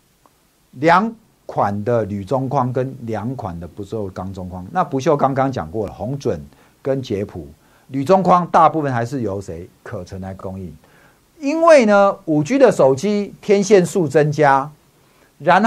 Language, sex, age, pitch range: Chinese, male, 50-69, 120-180 Hz